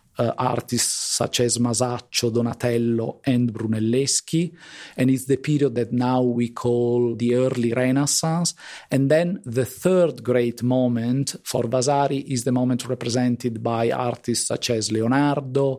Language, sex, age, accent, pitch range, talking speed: English, male, 40-59, Italian, 120-140 Hz, 135 wpm